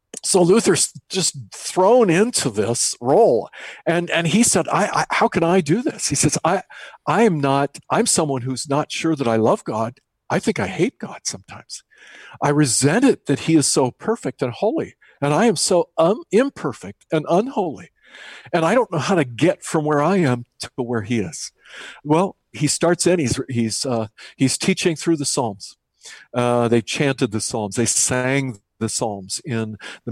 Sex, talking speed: male, 190 wpm